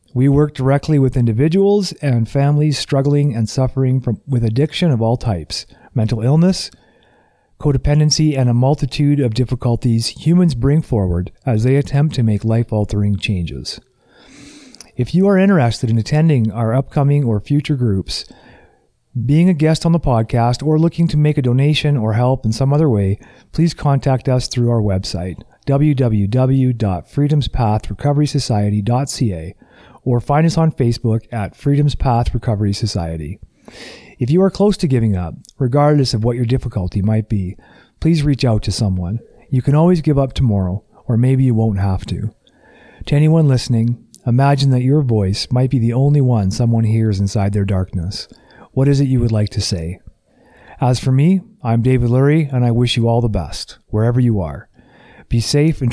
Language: English